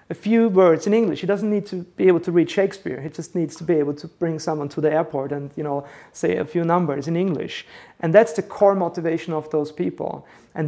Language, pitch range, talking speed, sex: English, 150-175 Hz, 245 wpm, male